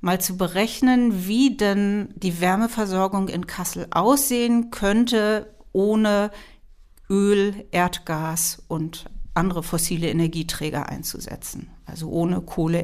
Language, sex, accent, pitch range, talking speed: German, female, German, 180-225 Hz, 105 wpm